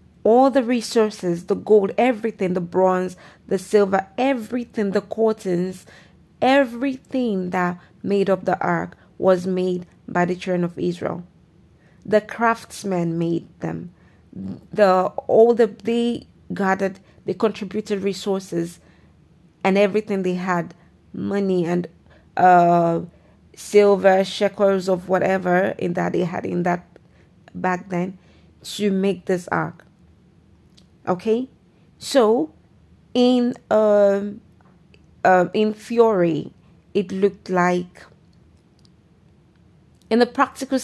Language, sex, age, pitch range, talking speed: English, female, 30-49, 180-215 Hz, 110 wpm